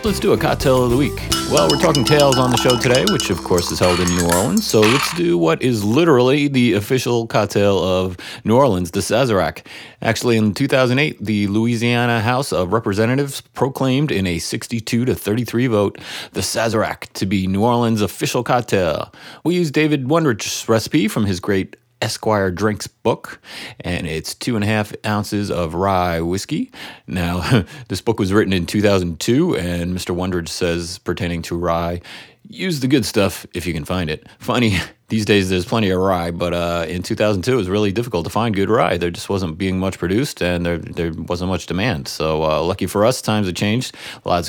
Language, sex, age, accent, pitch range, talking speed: English, male, 30-49, American, 90-120 Hz, 195 wpm